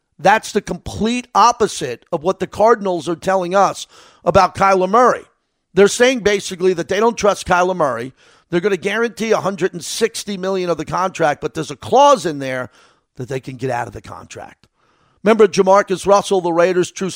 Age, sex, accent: 50-69, male, American